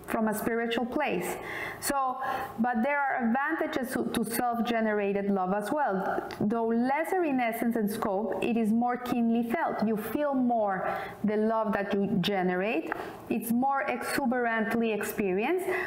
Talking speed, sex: 150 wpm, female